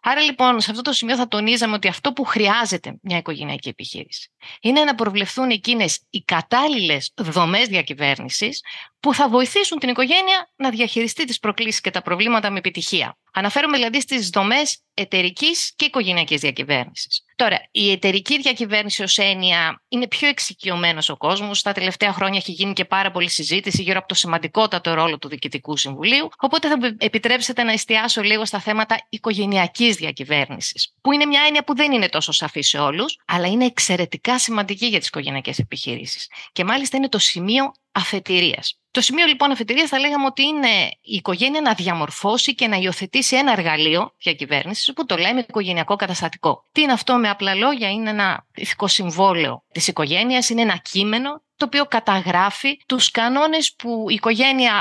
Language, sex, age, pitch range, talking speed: Greek, female, 30-49, 190-260 Hz, 165 wpm